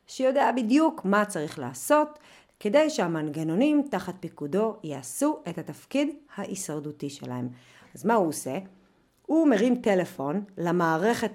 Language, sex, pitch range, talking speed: Hebrew, female, 160-230 Hz, 115 wpm